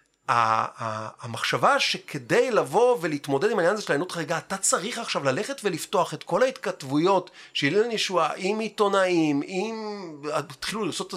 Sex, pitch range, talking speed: male, 155-230 Hz, 145 wpm